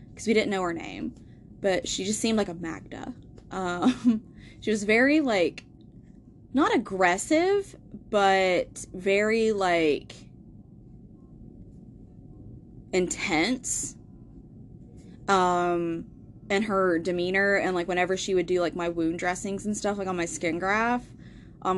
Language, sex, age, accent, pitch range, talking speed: English, female, 20-39, American, 170-200 Hz, 125 wpm